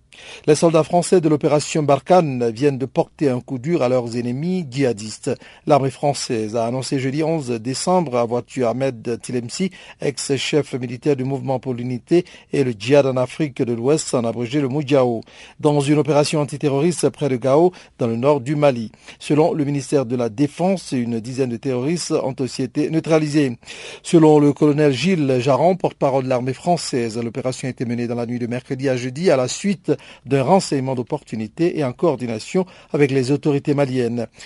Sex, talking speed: male, 180 wpm